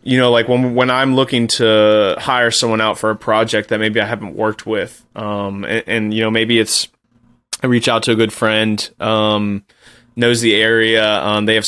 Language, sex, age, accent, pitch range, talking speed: English, male, 20-39, American, 105-120 Hz, 210 wpm